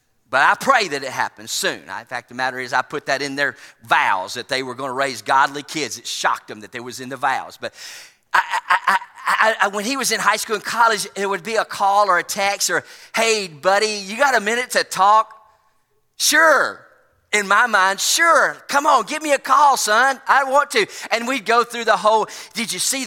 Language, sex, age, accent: English, male, 40-59, American